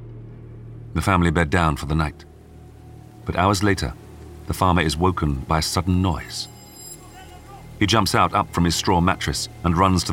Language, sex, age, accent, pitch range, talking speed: English, male, 40-59, British, 80-105 Hz, 170 wpm